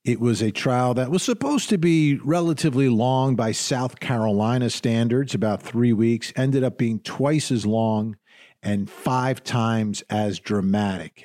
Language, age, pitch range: English, 50-69, 110-145 Hz